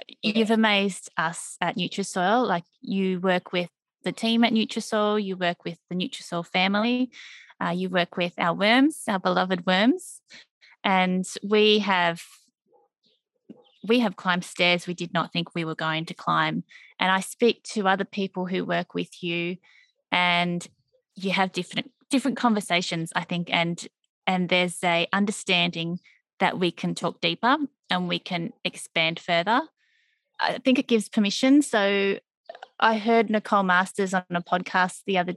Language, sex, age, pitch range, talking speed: English, female, 20-39, 175-220 Hz, 155 wpm